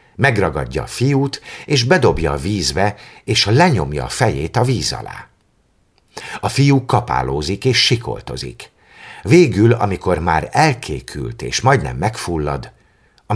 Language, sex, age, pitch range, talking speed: Hungarian, male, 50-69, 70-115 Hz, 120 wpm